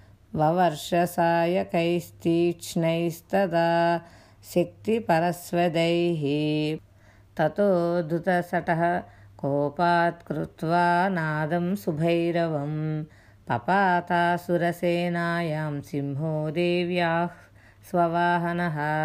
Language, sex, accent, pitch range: Telugu, female, native, 155-180 Hz